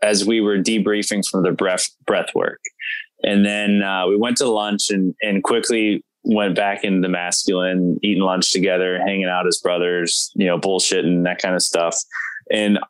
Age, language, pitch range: 20-39, English, 90-105 Hz